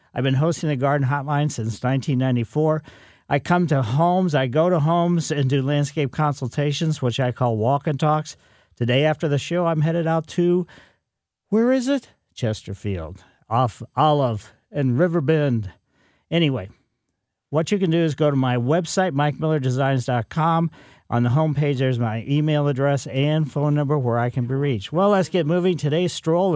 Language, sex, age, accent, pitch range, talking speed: English, male, 50-69, American, 125-160 Hz, 165 wpm